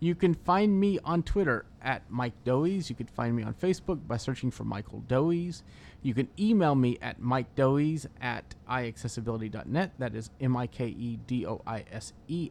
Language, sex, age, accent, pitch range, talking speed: English, male, 30-49, American, 115-135 Hz, 155 wpm